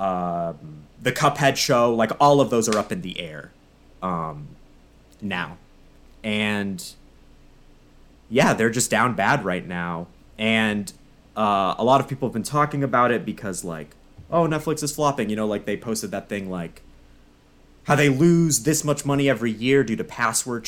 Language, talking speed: English, 170 wpm